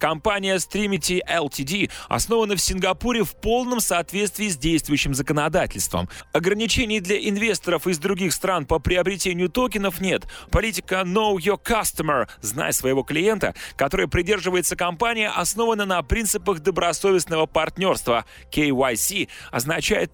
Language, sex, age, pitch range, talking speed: Russian, male, 20-39, 160-205 Hz, 115 wpm